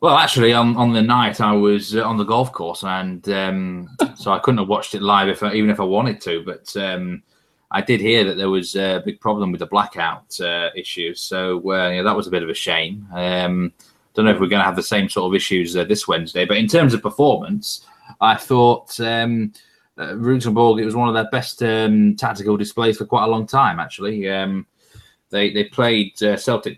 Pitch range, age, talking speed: 95-115 Hz, 20-39, 225 wpm